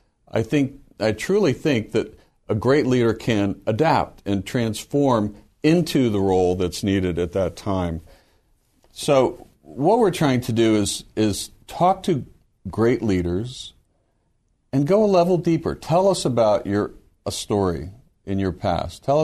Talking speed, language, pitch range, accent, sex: 150 wpm, English, 90-120 Hz, American, male